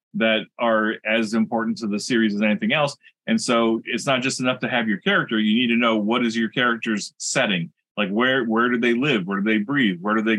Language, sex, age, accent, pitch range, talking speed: English, male, 30-49, American, 110-140 Hz, 245 wpm